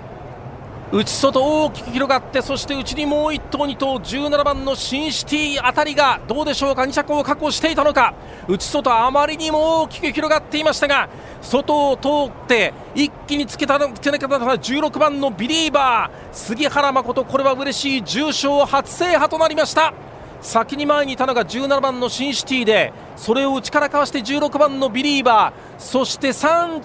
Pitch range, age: 260-295 Hz, 40-59